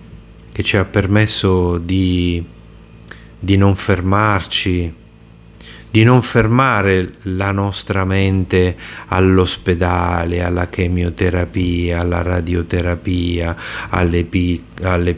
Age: 30-49